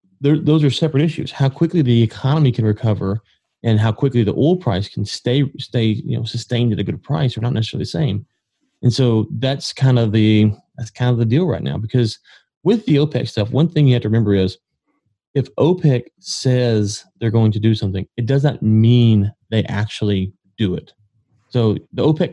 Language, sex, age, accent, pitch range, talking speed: English, male, 30-49, American, 105-125 Hz, 200 wpm